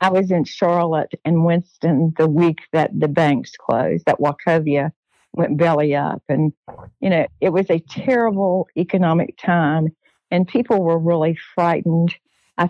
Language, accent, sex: English, American, female